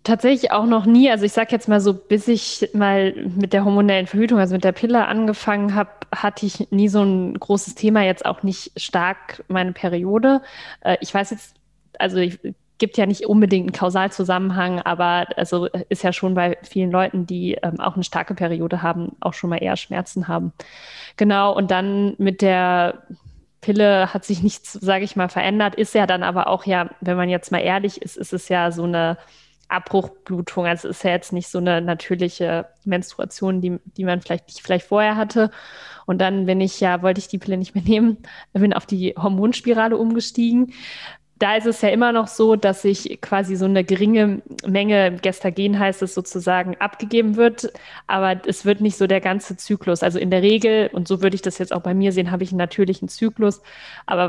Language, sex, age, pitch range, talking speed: German, female, 20-39, 180-210 Hz, 200 wpm